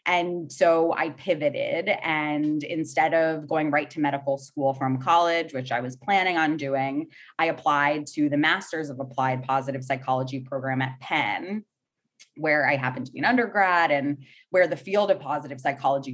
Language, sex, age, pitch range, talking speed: English, female, 20-39, 140-170 Hz, 170 wpm